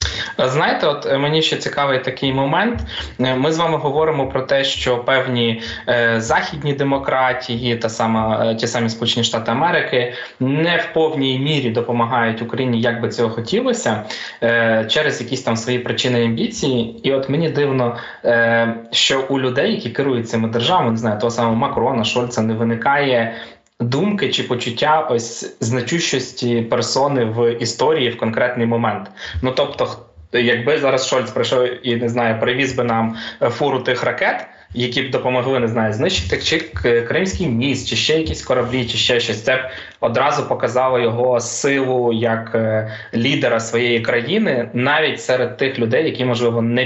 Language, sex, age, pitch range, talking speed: Ukrainian, male, 20-39, 115-130 Hz, 155 wpm